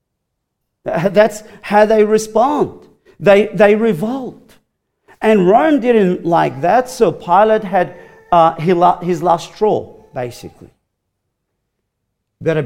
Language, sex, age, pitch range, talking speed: English, male, 50-69, 170-220 Hz, 100 wpm